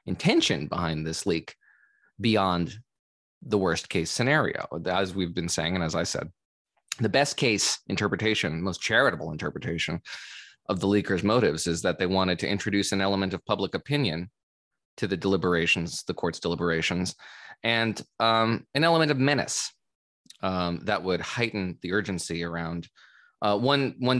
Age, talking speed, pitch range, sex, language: 20-39, 150 wpm, 90-110 Hz, male, English